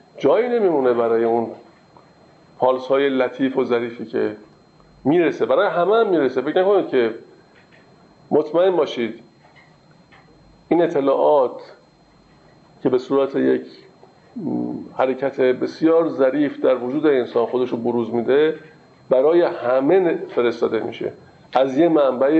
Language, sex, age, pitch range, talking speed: Persian, male, 50-69, 135-175 Hz, 115 wpm